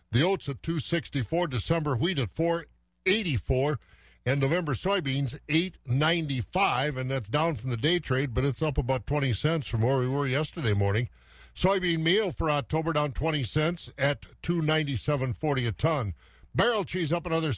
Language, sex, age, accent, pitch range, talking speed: English, male, 50-69, American, 125-170 Hz, 165 wpm